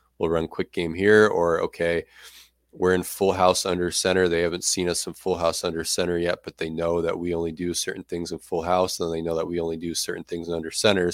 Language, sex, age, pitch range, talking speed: English, male, 20-39, 85-95 Hz, 250 wpm